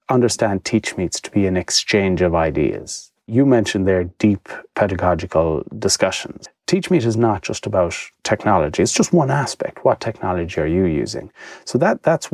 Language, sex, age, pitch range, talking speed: English, male, 30-49, 90-115 Hz, 165 wpm